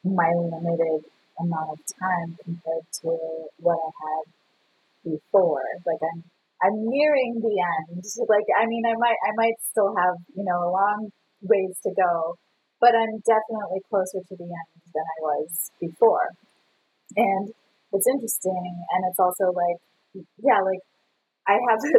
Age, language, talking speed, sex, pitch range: 30-49, English, 145 wpm, female, 170-230 Hz